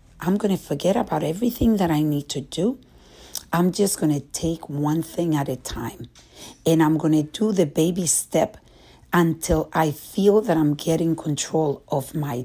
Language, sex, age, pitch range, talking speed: English, female, 60-79, 150-190 Hz, 185 wpm